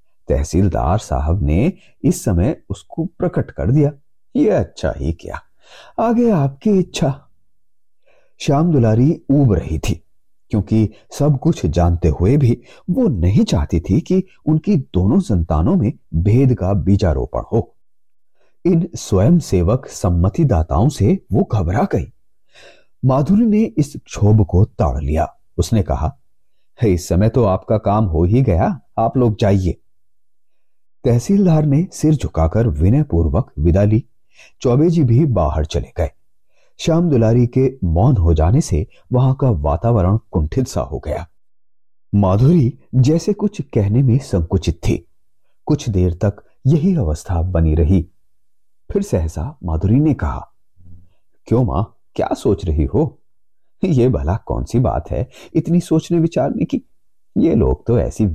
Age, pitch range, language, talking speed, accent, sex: 30-49, 85-135 Hz, Hindi, 135 wpm, native, male